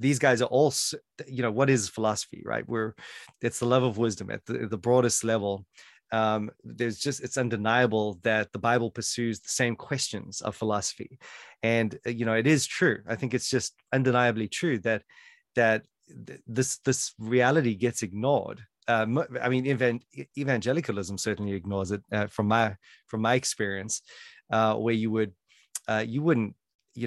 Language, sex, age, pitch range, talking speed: English, male, 30-49, 110-130 Hz, 165 wpm